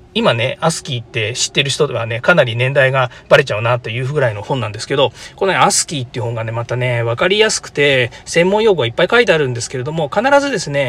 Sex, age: male, 40-59